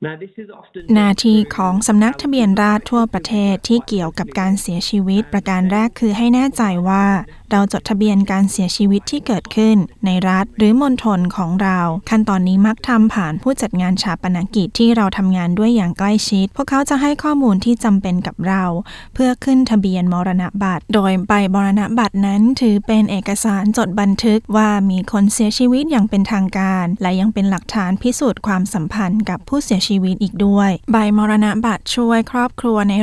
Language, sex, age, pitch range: Thai, female, 20-39, 190-220 Hz